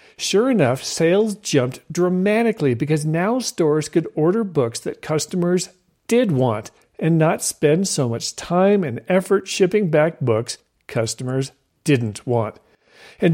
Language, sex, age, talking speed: English, male, 40-59, 135 wpm